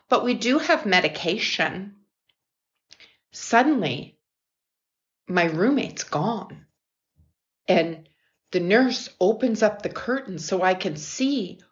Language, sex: English, female